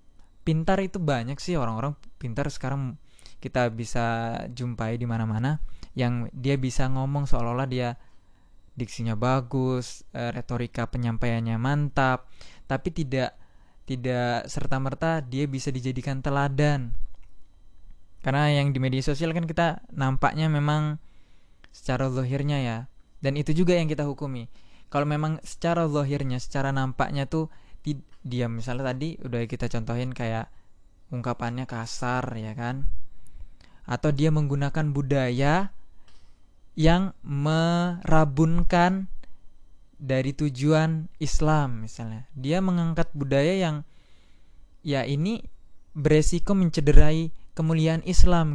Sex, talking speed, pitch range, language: male, 110 wpm, 115-150 Hz, Indonesian